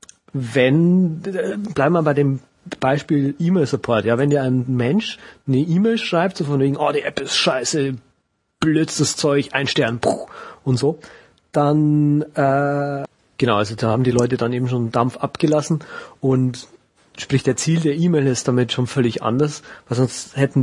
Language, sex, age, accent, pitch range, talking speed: German, male, 40-59, German, 120-145 Hz, 165 wpm